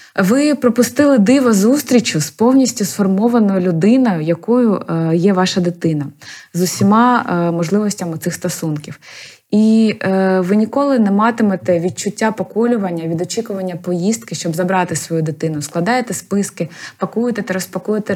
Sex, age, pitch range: female, 20-39, 175-220 Hz